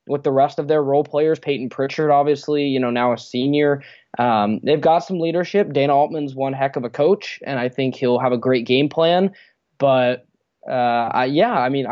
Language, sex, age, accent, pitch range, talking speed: English, male, 20-39, American, 130-165 Hz, 205 wpm